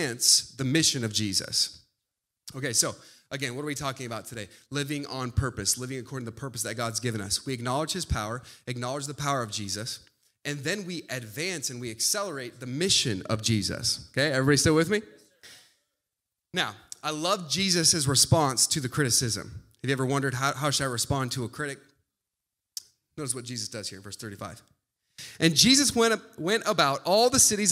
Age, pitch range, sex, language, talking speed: 30-49, 135-210 Hz, male, English, 185 wpm